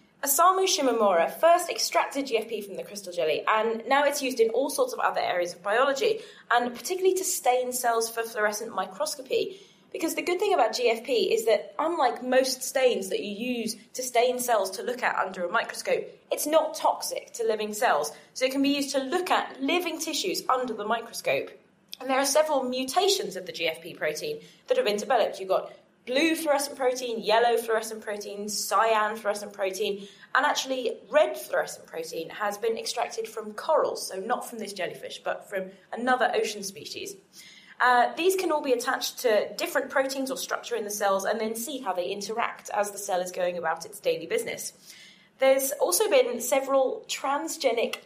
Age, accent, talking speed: 20-39, British, 185 wpm